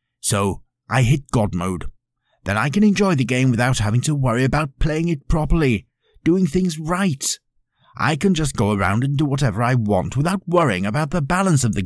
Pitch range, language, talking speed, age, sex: 105-140 Hz, English, 195 wpm, 50-69, male